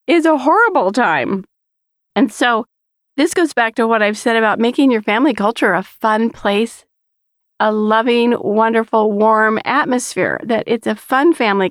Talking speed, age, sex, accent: 160 wpm, 40-59, female, American